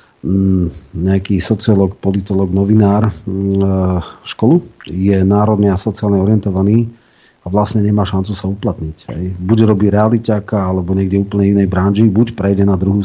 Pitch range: 95-105 Hz